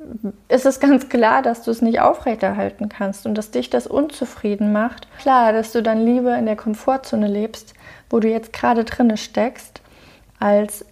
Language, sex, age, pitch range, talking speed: German, female, 30-49, 210-245 Hz, 180 wpm